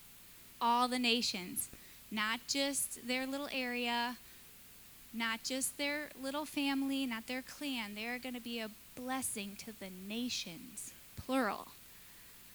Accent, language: American, English